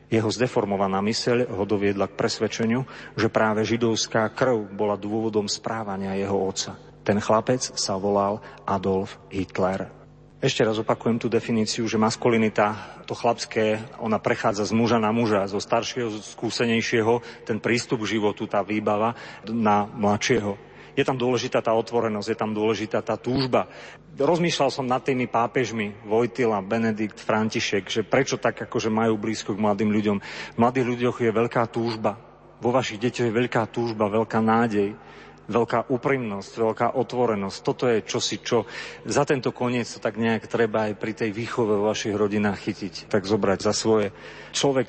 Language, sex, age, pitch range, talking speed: Slovak, male, 40-59, 105-120 Hz, 160 wpm